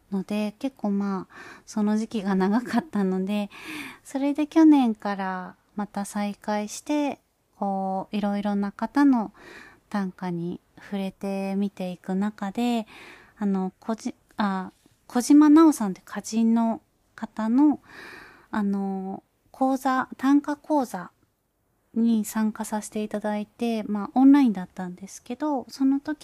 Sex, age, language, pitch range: female, 30-49, Japanese, 195-260 Hz